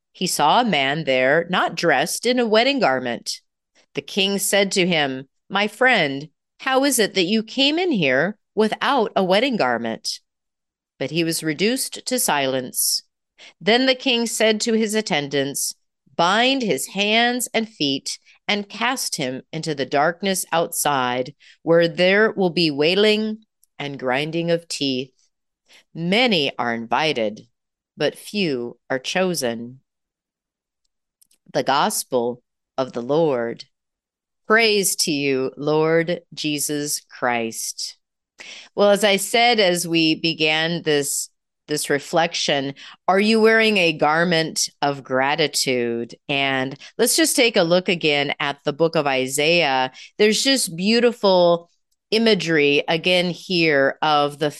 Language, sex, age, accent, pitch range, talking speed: English, female, 40-59, American, 145-220 Hz, 130 wpm